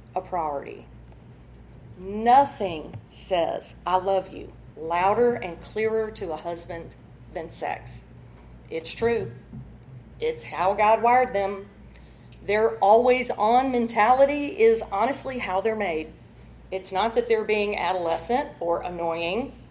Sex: female